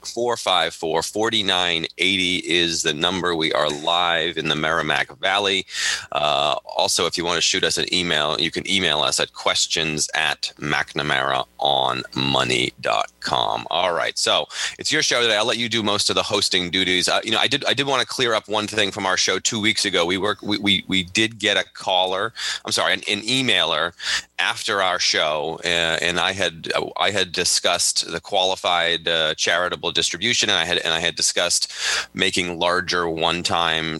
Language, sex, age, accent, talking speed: English, male, 30-49, American, 185 wpm